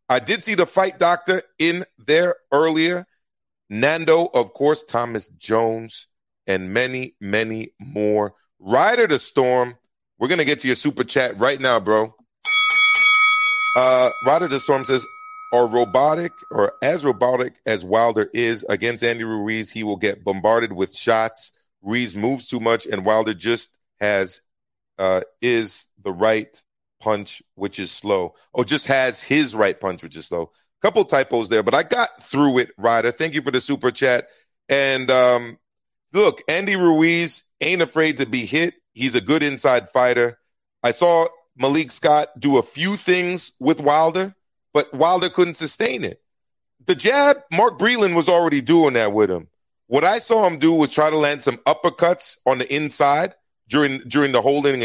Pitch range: 115-170 Hz